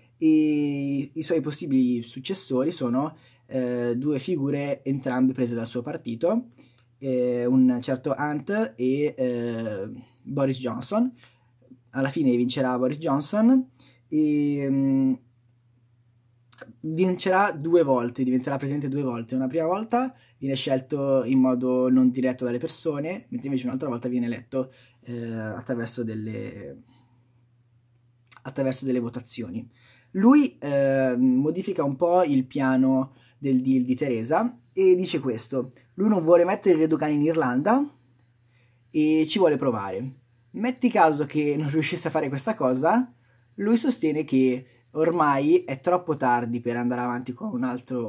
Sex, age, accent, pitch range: male, 20-39, native, 125-155 Hz